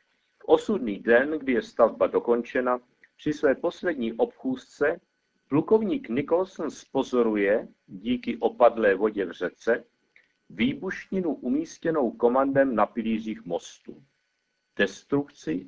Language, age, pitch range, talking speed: Czech, 50-69, 115-160 Hz, 100 wpm